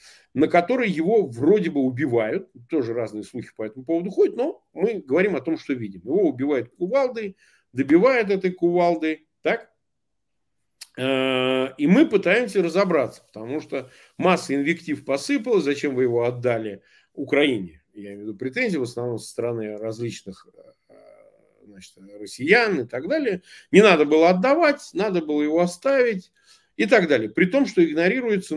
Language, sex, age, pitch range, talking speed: Russian, male, 50-69, 125-190 Hz, 145 wpm